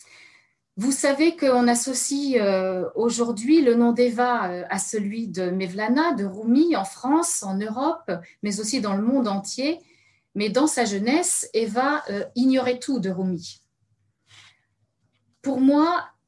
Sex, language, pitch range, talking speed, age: female, French, 200-260 Hz, 130 wpm, 40-59